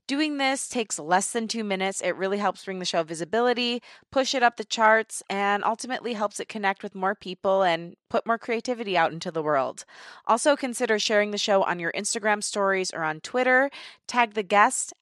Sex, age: female, 20-39